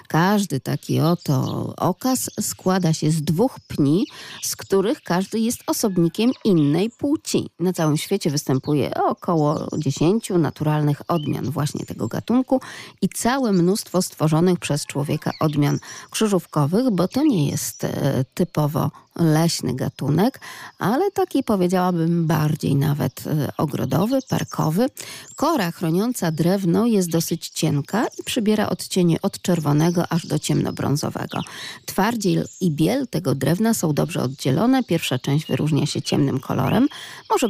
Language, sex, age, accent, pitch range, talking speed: Polish, female, 40-59, native, 150-195 Hz, 125 wpm